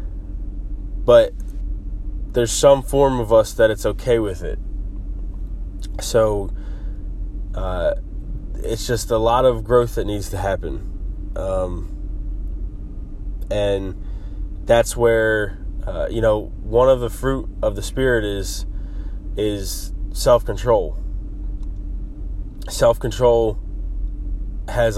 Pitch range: 95-110 Hz